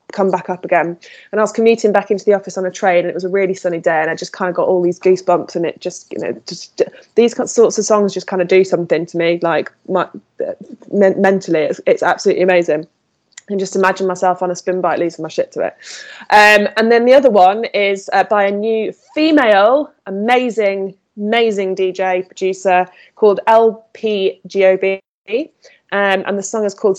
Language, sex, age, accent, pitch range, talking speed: English, female, 20-39, British, 180-205 Hz, 205 wpm